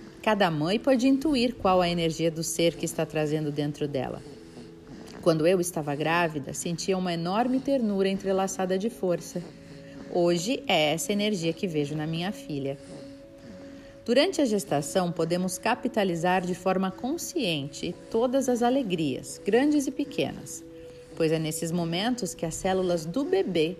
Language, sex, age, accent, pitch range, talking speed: Portuguese, female, 40-59, Brazilian, 165-230 Hz, 145 wpm